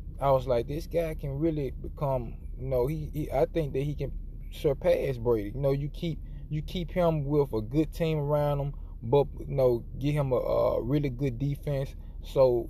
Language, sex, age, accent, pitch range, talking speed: English, male, 20-39, American, 110-150 Hz, 205 wpm